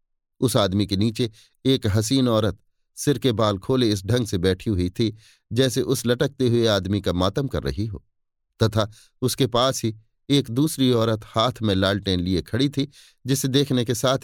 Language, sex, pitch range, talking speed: Hindi, male, 100-145 Hz, 185 wpm